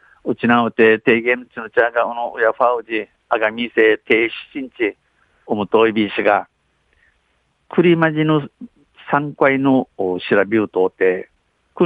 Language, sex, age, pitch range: Japanese, male, 50-69, 115-140 Hz